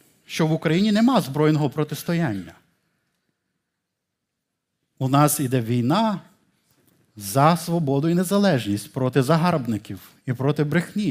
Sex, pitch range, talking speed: male, 130-160 Hz, 105 wpm